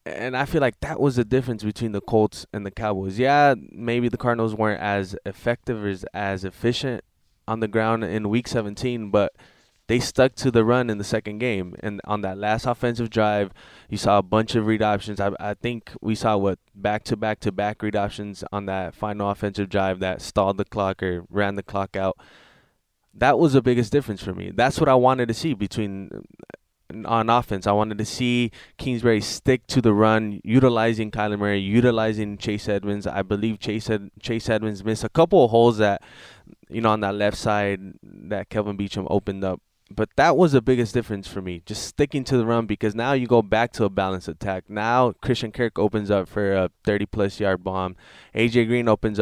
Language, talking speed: English, 200 wpm